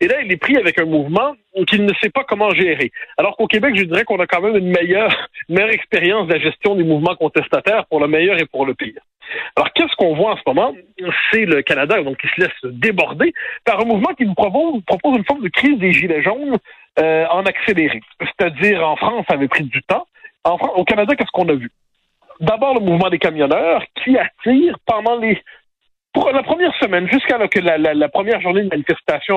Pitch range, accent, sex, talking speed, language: 165-240 Hz, French, male, 225 wpm, French